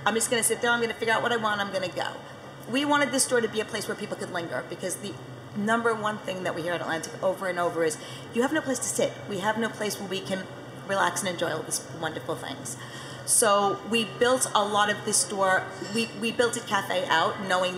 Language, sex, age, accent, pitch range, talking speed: English, female, 40-59, American, 175-215 Hz, 255 wpm